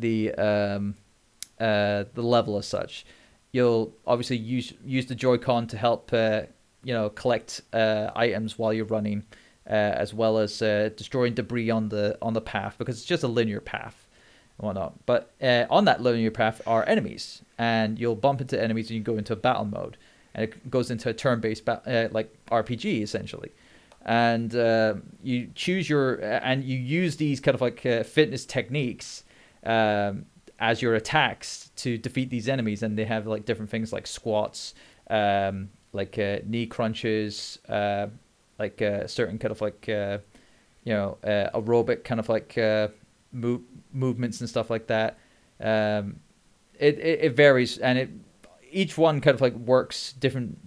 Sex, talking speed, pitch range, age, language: male, 175 wpm, 110-125 Hz, 30-49, English